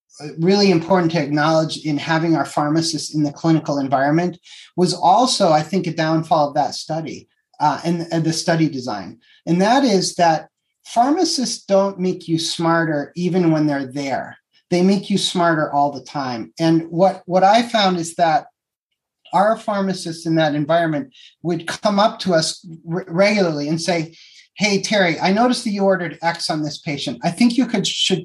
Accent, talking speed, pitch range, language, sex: American, 175 wpm, 160-195 Hz, English, male